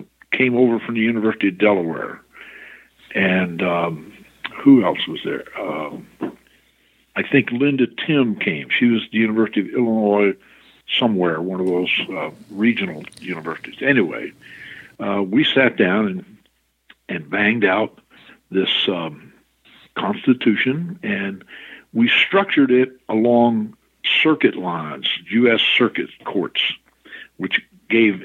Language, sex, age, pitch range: English, male, 60-79, 95-125 Hz